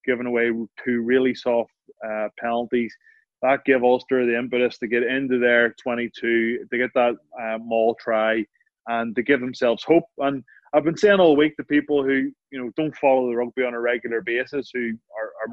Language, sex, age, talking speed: English, male, 20-39, 195 wpm